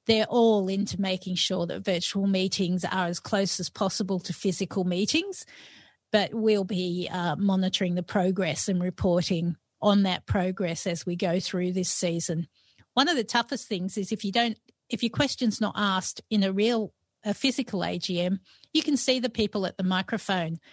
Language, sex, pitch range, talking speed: English, female, 180-225 Hz, 180 wpm